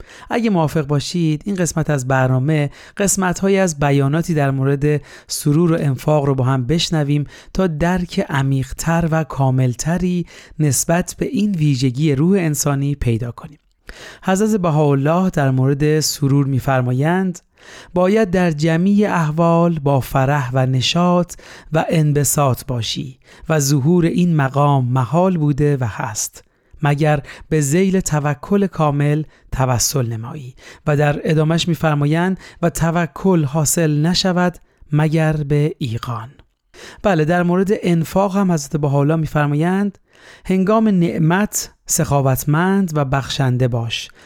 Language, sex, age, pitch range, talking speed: Persian, male, 30-49, 140-170 Hz, 120 wpm